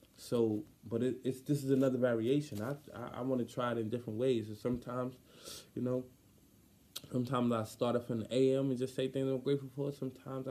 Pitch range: 105-130 Hz